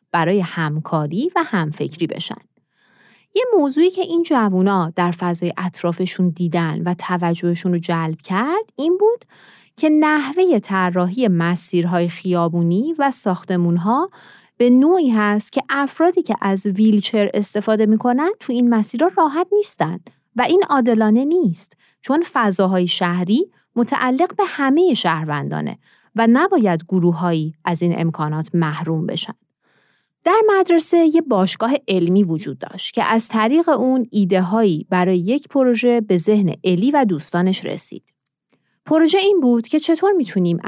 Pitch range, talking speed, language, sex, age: 175-275 Hz, 135 wpm, Persian, female, 30-49